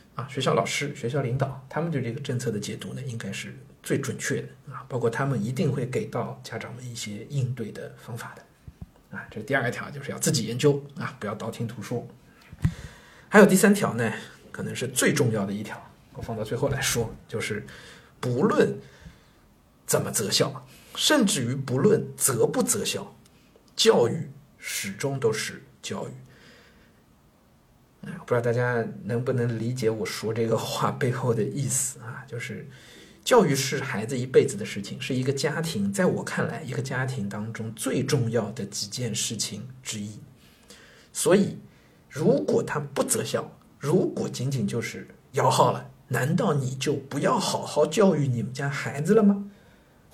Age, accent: 50-69, native